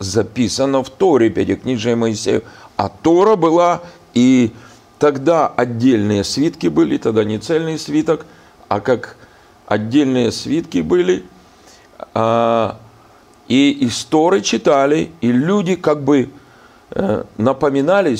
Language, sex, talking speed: Russian, male, 100 wpm